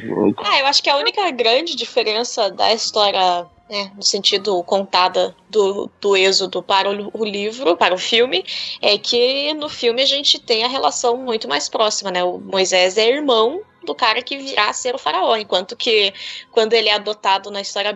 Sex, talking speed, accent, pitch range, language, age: female, 185 wpm, Brazilian, 200-255 Hz, Portuguese, 10-29